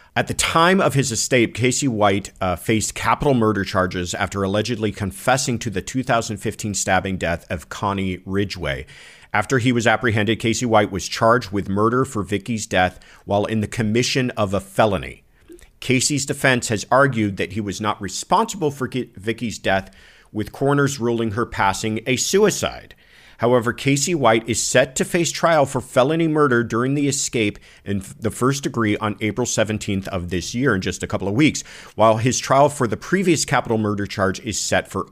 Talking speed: 180 wpm